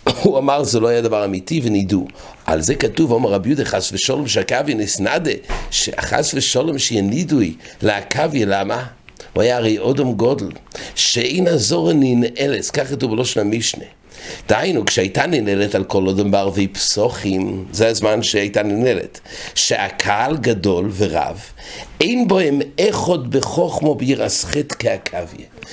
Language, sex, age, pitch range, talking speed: English, male, 60-79, 100-135 Hz, 110 wpm